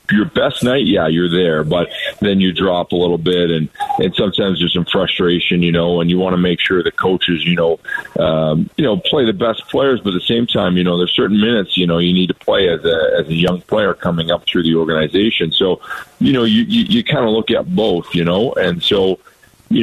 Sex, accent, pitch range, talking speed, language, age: male, American, 85-95 Hz, 245 wpm, English, 40-59